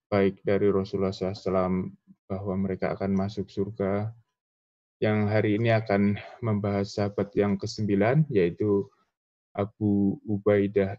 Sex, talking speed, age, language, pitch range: male, 110 wpm, 20-39, Indonesian, 95-100 Hz